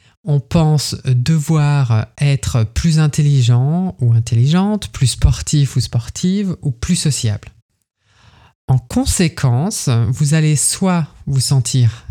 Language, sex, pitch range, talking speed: French, male, 120-150 Hz, 110 wpm